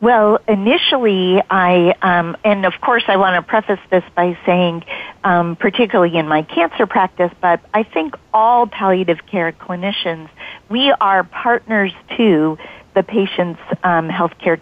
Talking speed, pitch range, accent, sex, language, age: 150 wpm, 170-205 Hz, American, female, English, 40-59